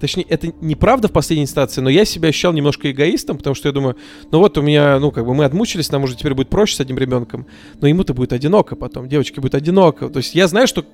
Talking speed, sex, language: 250 wpm, male, Russian